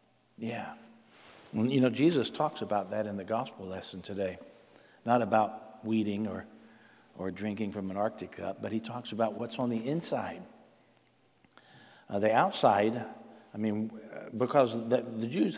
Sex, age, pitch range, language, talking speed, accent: male, 50-69, 110-140 Hz, English, 150 wpm, American